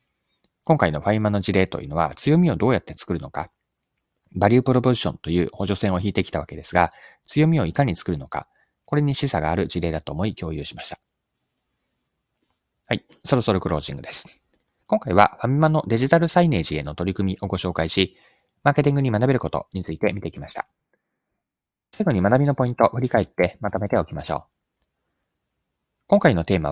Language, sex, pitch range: Japanese, male, 90-135 Hz